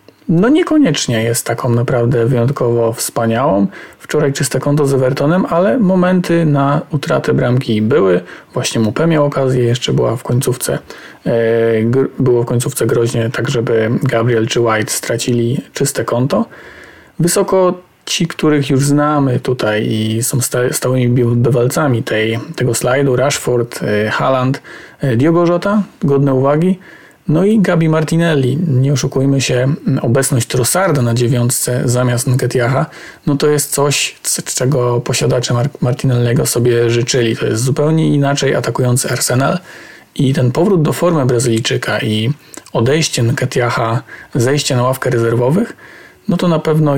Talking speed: 135 wpm